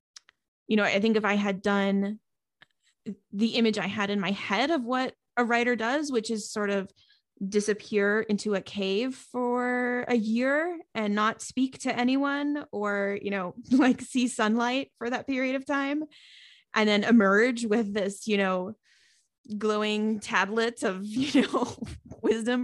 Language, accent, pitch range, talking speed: English, American, 185-240 Hz, 160 wpm